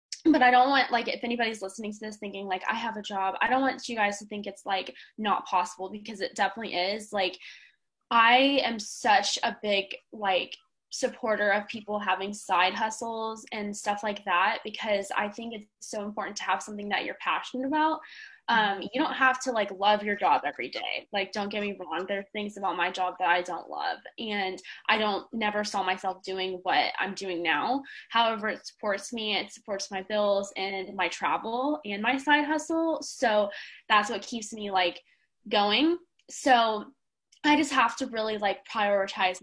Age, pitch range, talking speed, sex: 10-29, 195-245 Hz, 195 wpm, female